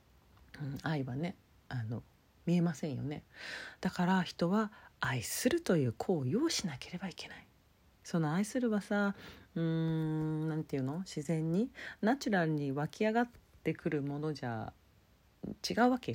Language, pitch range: Japanese, 140-215 Hz